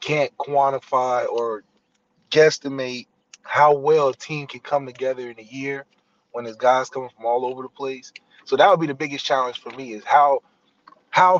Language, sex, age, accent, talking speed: English, male, 20-39, American, 185 wpm